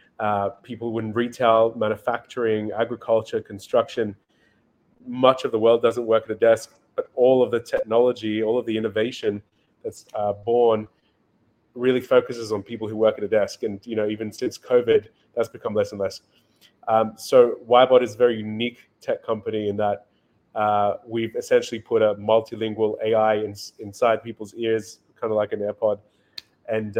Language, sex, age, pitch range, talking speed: English, male, 20-39, 105-120 Hz, 170 wpm